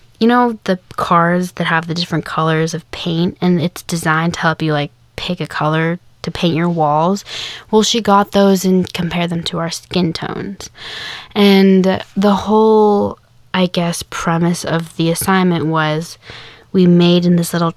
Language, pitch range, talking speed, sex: English, 160-190 Hz, 170 wpm, female